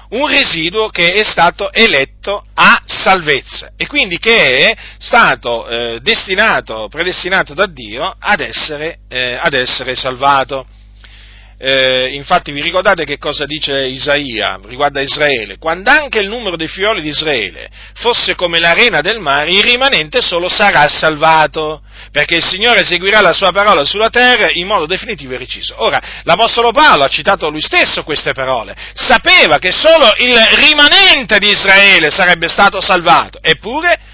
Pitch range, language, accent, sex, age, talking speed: 140-220 Hz, Italian, native, male, 40-59, 150 wpm